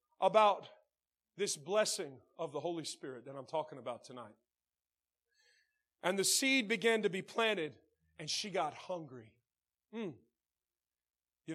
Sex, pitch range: male, 155-225 Hz